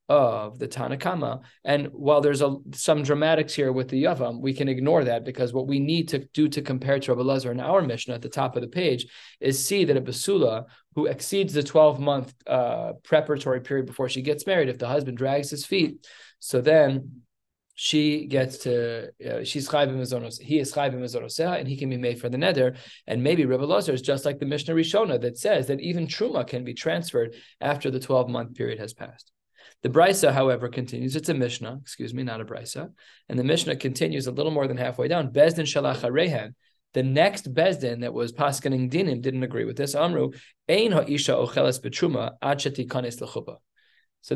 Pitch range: 130-150 Hz